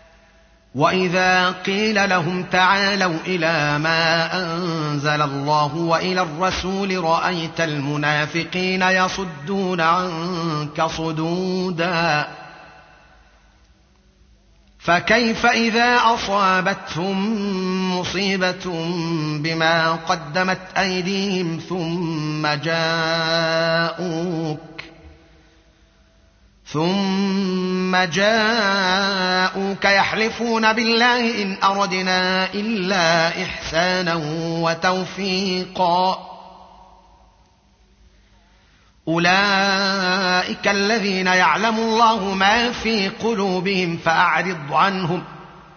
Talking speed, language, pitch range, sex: 55 wpm, Arabic, 165-195 Hz, male